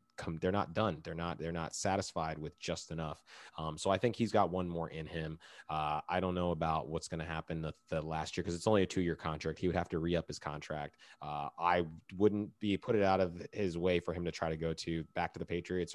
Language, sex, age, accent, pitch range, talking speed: English, male, 30-49, American, 80-95 Hz, 260 wpm